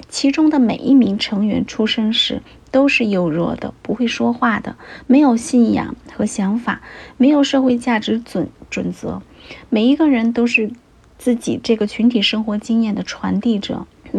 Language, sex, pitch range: Chinese, female, 210-255 Hz